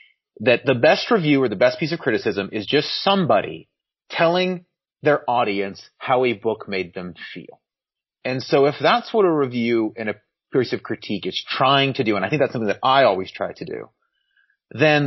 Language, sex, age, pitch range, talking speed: English, male, 30-49, 105-155 Hz, 200 wpm